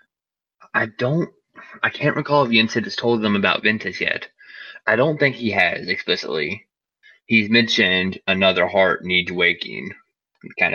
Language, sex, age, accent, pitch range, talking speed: English, male, 20-39, American, 95-115 Hz, 150 wpm